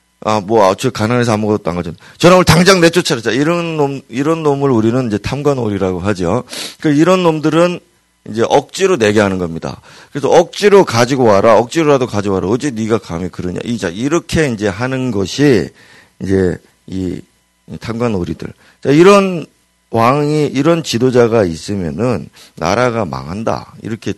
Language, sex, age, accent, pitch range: Korean, male, 40-59, native, 100-155 Hz